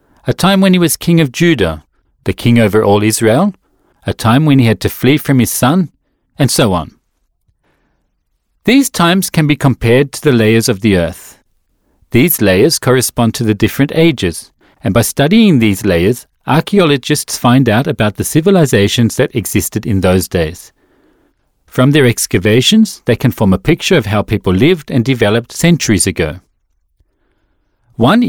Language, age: English, 40-59